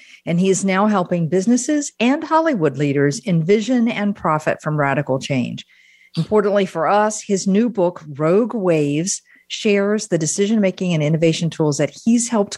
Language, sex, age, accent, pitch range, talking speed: English, female, 50-69, American, 150-200 Hz, 155 wpm